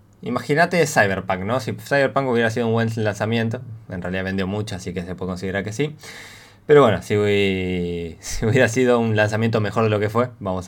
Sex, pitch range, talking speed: male, 95-115 Hz, 190 wpm